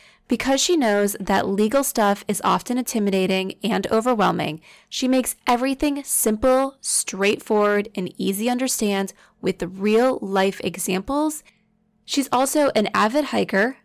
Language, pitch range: English, 200-255 Hz